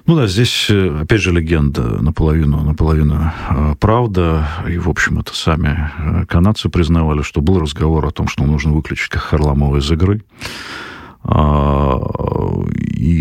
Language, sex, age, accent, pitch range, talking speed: Russian, male, 40-59, native, 75-90 Hz, 125 wpm